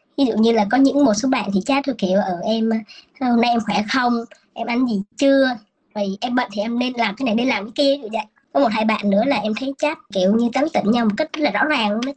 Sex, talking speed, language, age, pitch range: male, 290 wpm, Vietnamese, 20-39, 210-275 Hz